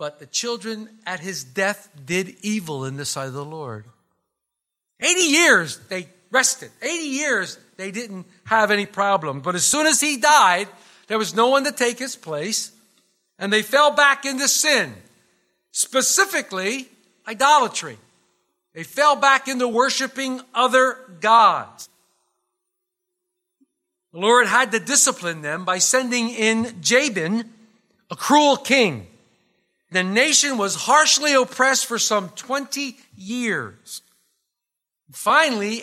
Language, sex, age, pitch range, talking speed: English, male, 50-69, 190-275 Hz, 130 wpm